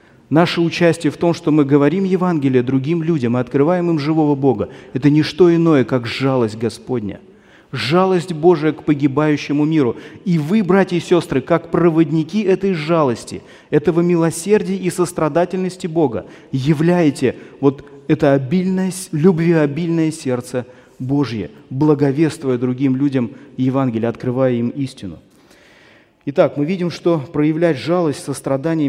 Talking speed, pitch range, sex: 125 wpm, 125-165 Hz, male